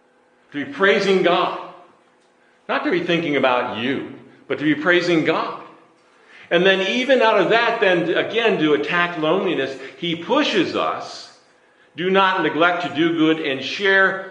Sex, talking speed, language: male, 155 wpm, English